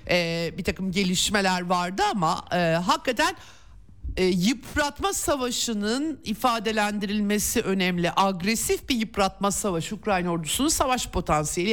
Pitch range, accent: 175-230 Hz, native